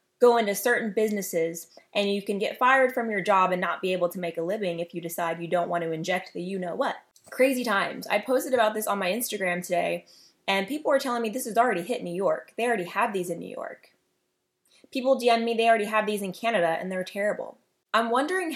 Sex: female